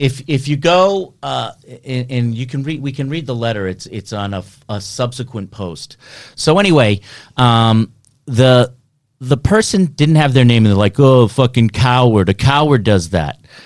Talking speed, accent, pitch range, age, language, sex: 185 wpm, American, 125-165 Hz, 40-59, English, male